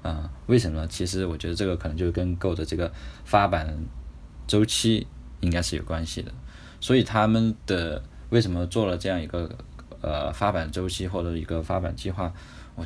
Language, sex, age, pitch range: Chinese, male, 20-39, 80-95 Hz